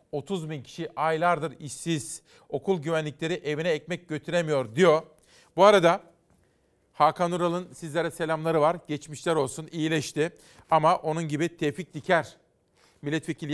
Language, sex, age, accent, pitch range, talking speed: Turkish, male, 40-59, native, 145-175 Hz, 120 wpm